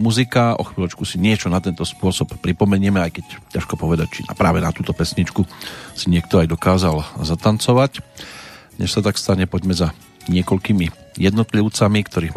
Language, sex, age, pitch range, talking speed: Slovak, male, 40-59, 90-105 Hz, 160 wpm